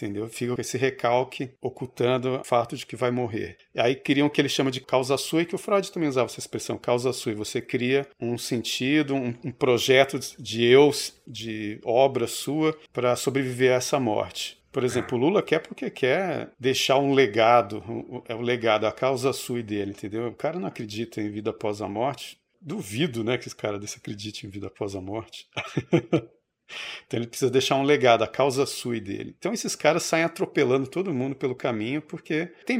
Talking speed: 210 wpm